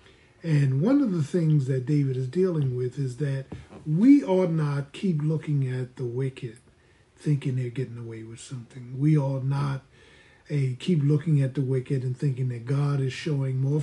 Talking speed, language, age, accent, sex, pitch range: 180 wpm, English, 50-69, American, male, 125-155 Hz